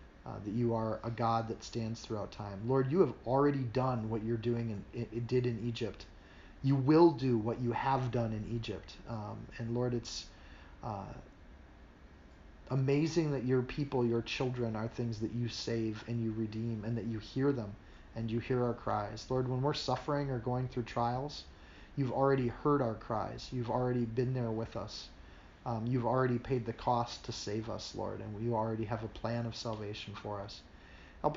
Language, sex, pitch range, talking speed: English, male, 110-125 Hz, 190 wpm